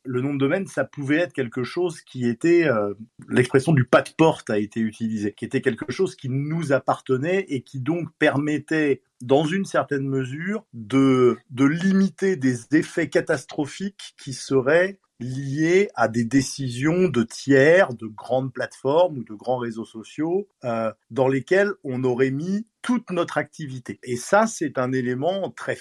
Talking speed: 165 wpm